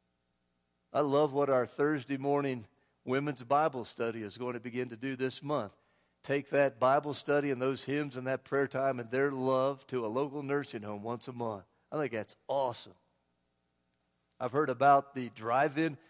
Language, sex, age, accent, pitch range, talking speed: English, male, 50-69, American, 120-150 Hz, 180 wpm